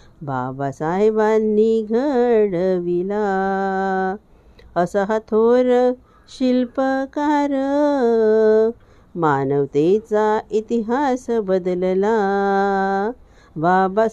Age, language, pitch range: 50-69, Marathi, 190-240 Hz